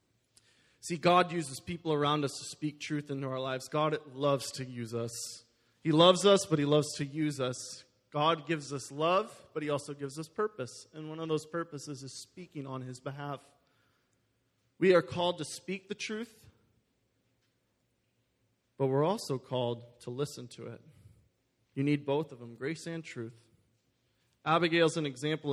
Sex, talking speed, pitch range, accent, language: male, 170 wpm, 125-155 Hz, American, English